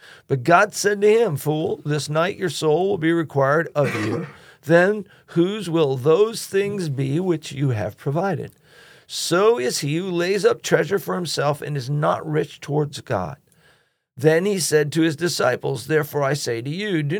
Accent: American